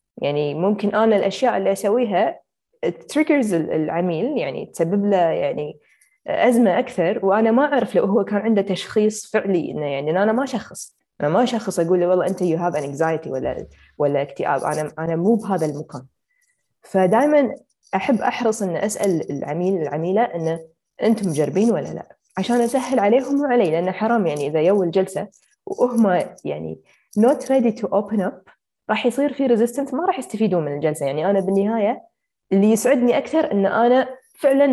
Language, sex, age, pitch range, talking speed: English, female, 20-39, 180-245 Hz, 160 wpm